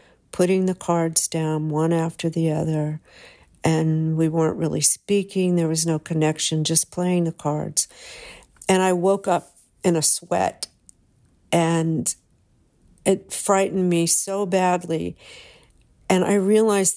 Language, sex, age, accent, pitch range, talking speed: English, female, 50-69, American, 165-200 Hz, 130 wpm